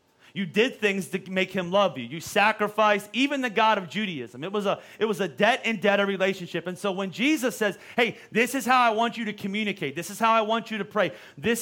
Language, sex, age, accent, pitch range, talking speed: English, male, 30-49, American, 185-225 Hz, 250 wpm